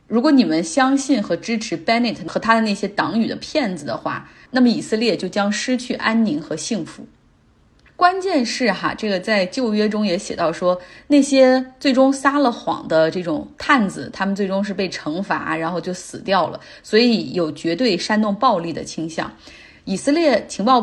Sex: female